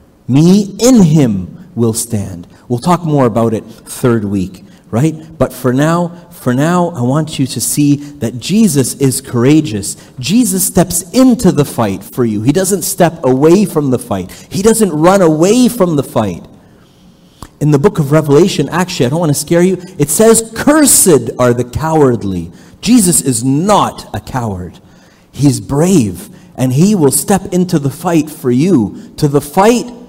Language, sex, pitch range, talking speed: English, male, 115-170 Hz, 170 wpm